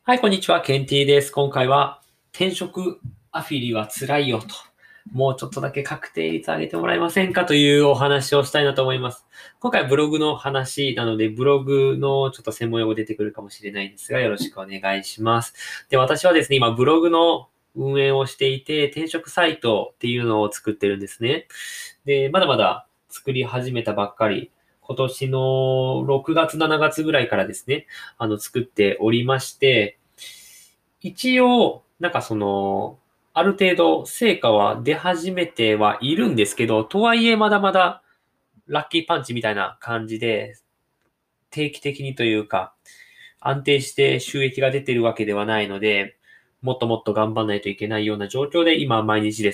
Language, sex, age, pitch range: Japanese, male, 20-39, 110-150 Hz